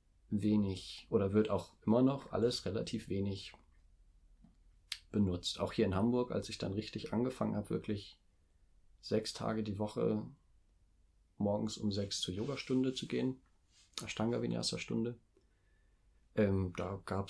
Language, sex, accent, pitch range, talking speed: German, male, German, 90-105 Hz, 135 wpm